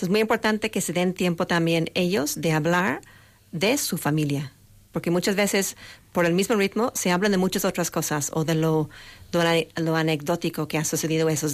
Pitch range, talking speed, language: 155-185 Hz, 190 wpm, Spanish